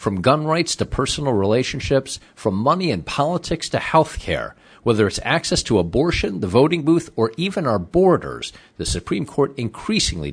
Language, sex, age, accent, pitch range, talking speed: English, male, 50-69, American, 100-145 Hz, 170 wpm